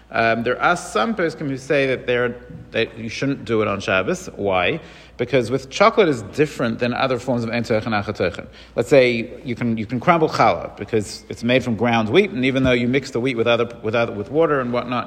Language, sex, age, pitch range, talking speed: English, male, 40-59, 115-140 Hz, 230 wpm